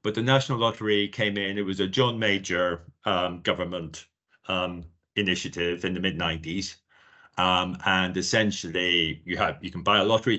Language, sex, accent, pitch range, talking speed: English, male, British, 85-100 Hz, 170 wpm